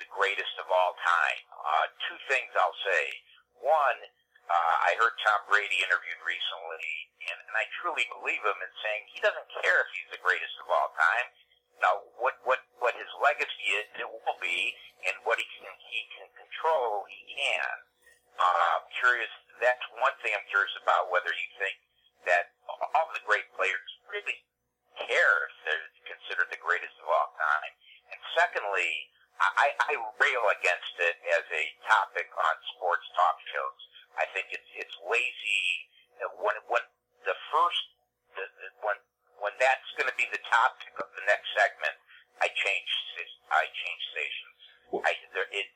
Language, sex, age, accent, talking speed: English, male, 50-69, American, 170 wpm